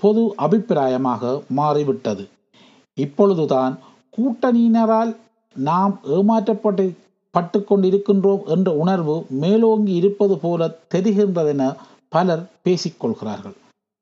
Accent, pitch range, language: native, 165-210 Hz, Tamil